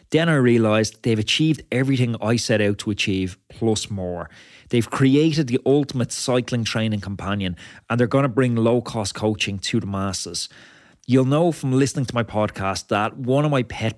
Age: 30-49